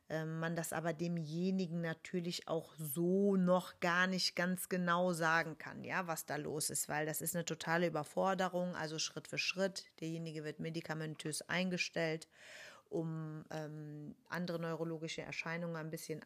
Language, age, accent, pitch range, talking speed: German, 40-59, German, 155-180 Hz, 150 wpm